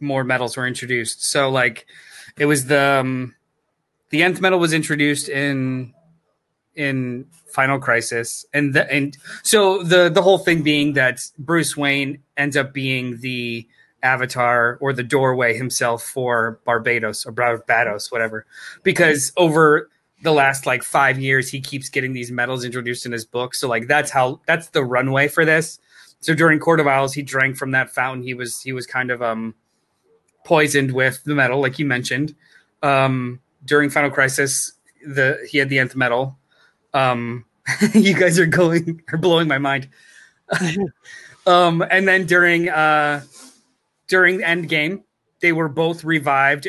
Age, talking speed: 20-39, 160 wpm